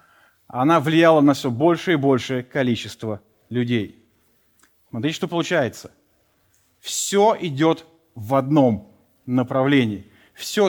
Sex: male